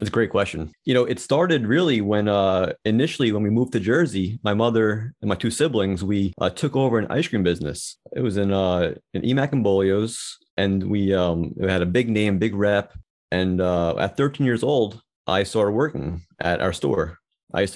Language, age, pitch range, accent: English, 30-49, 95-115 Hz, American